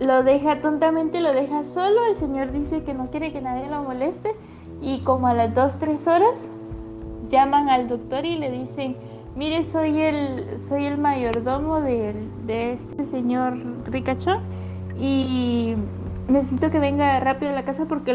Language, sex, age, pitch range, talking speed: Spanish, female, 20-39, 230-300 Hz, 160 wpm